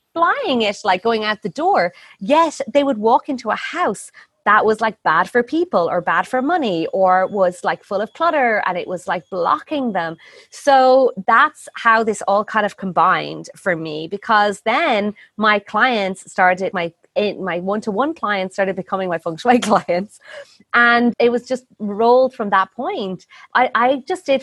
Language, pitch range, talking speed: English, 190-250 Hz, 180 wpm